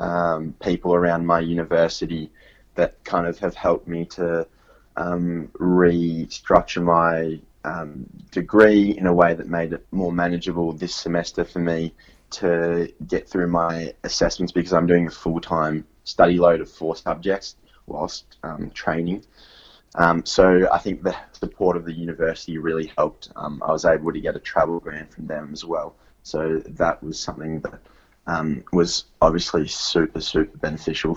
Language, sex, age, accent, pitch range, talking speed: English, male, 20-39, Australian, 80-85 Hz, 160 wpm